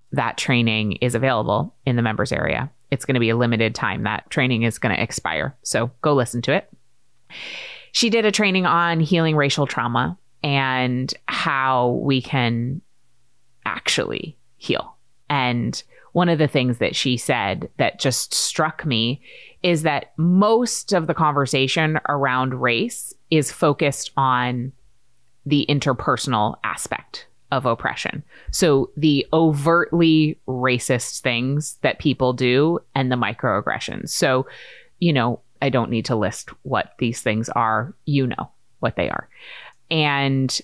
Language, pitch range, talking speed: English, 125-155 Hz, 145 wpm